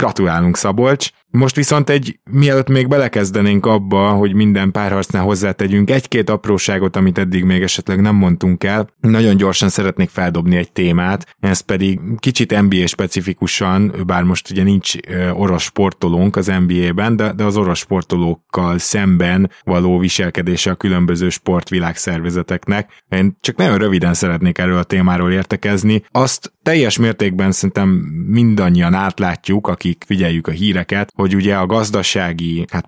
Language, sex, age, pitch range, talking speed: Hungarian, male, 20-39, 90-105 Hz, 140 wpm